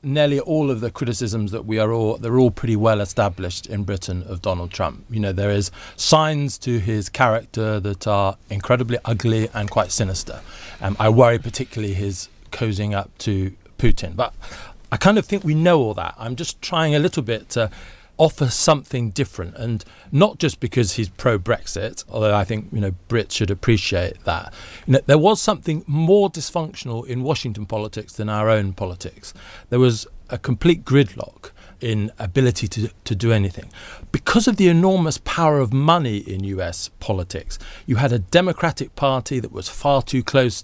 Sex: male